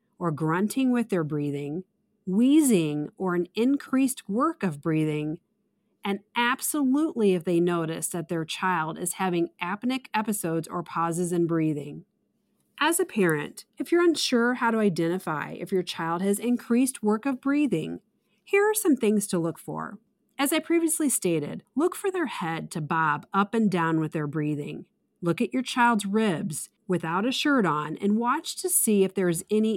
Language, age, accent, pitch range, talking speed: English, 40-59, American, 175-240 Hz, 170 wpm